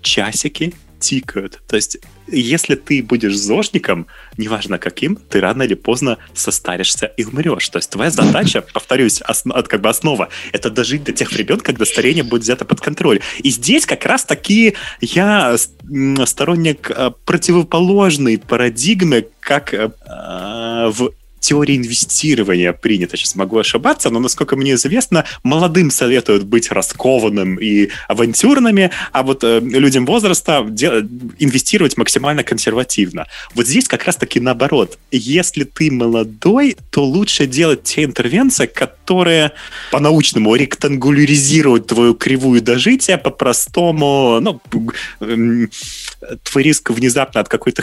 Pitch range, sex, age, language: 110-150 Hz, male, 20-39, Russian